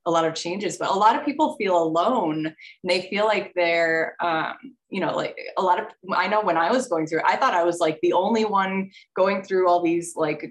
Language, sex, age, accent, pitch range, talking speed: English, female, 20-39, American, 165-195 Hz, 245 wpm